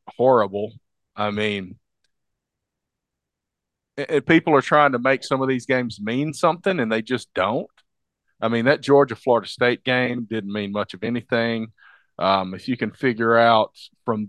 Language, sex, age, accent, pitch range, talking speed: English, male, 40-59, American, 105-125 Hz, 150 wpm